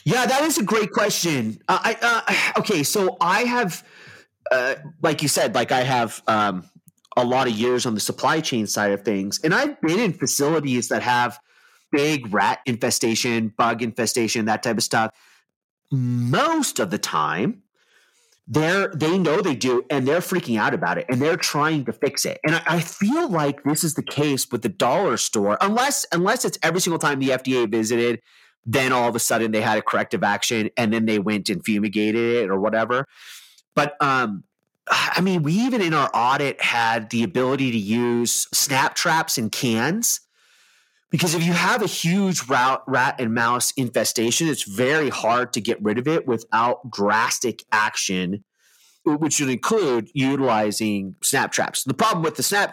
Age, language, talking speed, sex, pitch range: 30-49, English, 180 wpm, male, 115-170 Hz